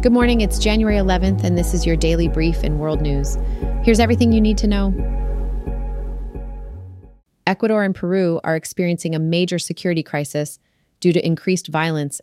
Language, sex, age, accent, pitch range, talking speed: English, female, 30-49, American, 150-185 Hz, 160 wpm